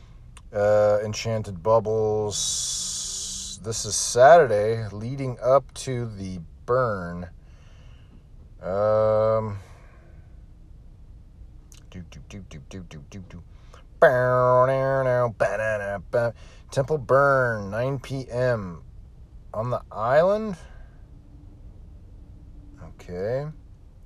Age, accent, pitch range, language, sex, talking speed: 40-59, American, 85-120 Hz, English, male, 45 wpm